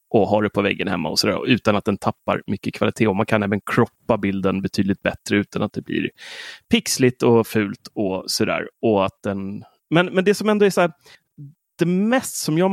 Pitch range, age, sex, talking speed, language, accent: 110-140 Hz, 30-49, male, 210 wpm, Swedish, native